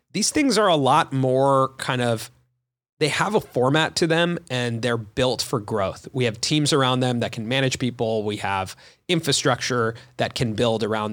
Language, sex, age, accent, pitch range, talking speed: English, male, 30-49, American, 115-150 Hz, 190 wpm